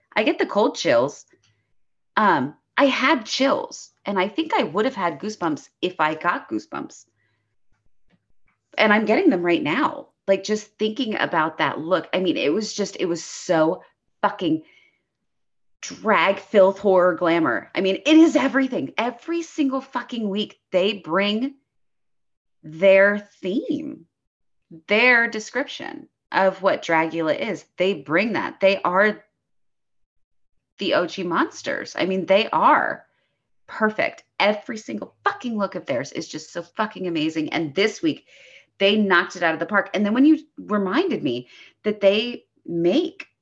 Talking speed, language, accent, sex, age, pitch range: 150 wpm, English, American, female, 30-49, 170-245 Hz